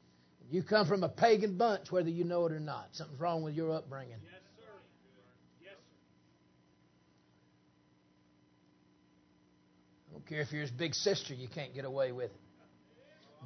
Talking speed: 140 wpm